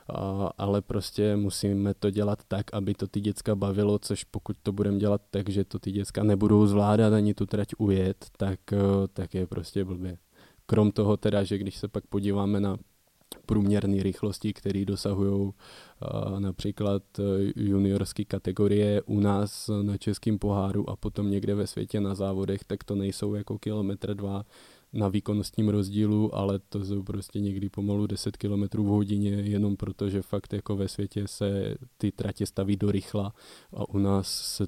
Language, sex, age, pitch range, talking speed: Czech, male, 20-39, 100-105 Hz, 165 wpm